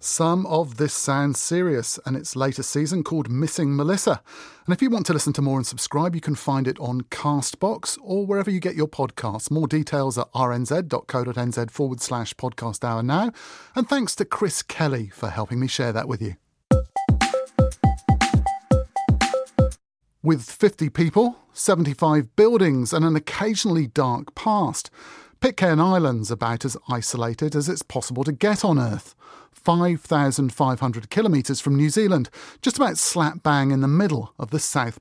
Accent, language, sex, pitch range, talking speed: British, English, male, 125-180 Hz, 160 wpm